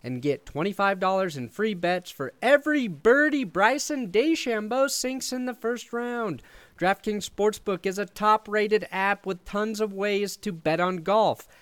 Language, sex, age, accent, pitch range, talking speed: English, male, 30-49, American, 160-220 Hz, 155 wpm